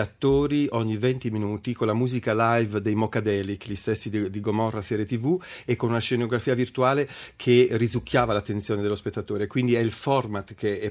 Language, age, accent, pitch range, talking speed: Italian, 40-59, native, 110-130 Hz, 180 wpm